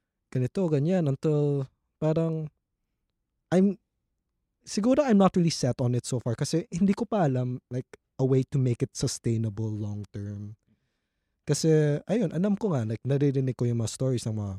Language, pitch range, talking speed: Filipino, 115-155 Hz, 170 wpm